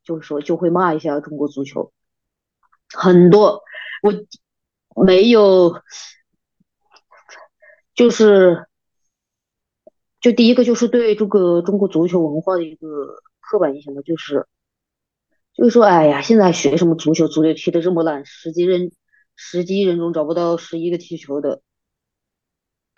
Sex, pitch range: female, 160-200 Hz